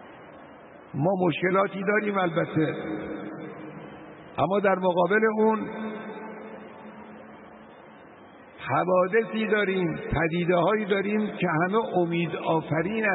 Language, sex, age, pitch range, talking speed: Persian, male, 60-79, 160-195 Hz, 70 wpm